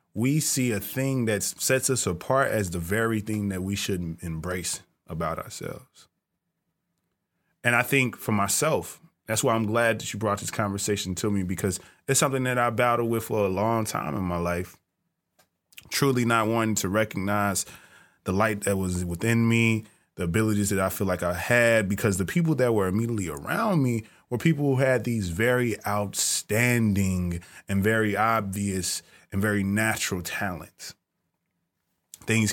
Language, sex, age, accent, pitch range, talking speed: English, male, 20-39, American, 95-120 Hz, 165 wpm